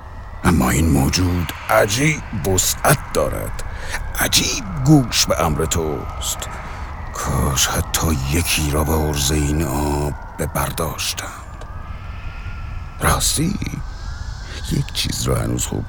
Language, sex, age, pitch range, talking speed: Persian, male, 60-79, 75-95 Hz, 100 wpm